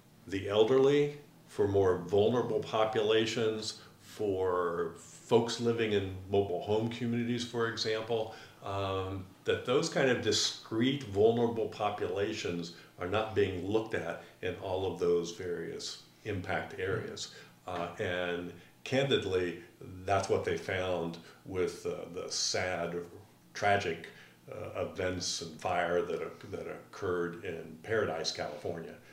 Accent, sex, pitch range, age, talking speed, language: American, male, 90-115 Hz, 50-69, 115 wpm, English